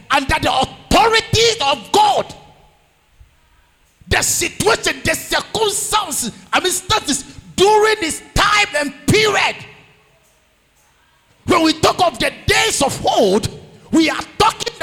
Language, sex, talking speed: English, male, 110 wpm